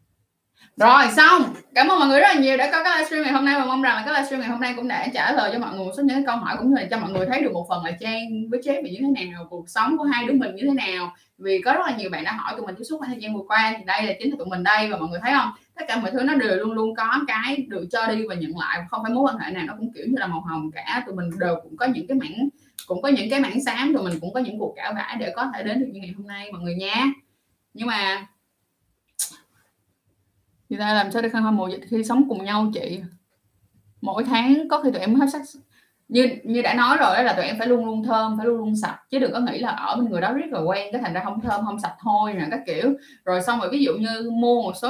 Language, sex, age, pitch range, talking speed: Vietnamese, female, 20-39, 195-270 Hz, 305 wpm